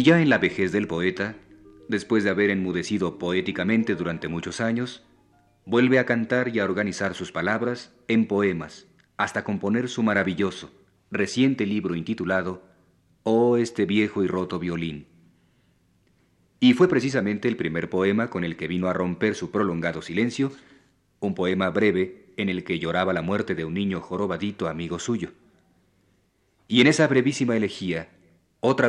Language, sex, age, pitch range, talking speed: Spanish, male, 40-59, 90-115 Hz, 155 wpm